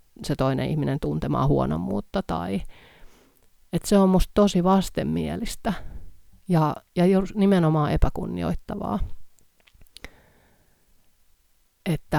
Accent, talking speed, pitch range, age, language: native, 90 wpm, 130-170 Hz, 30-49, Finnish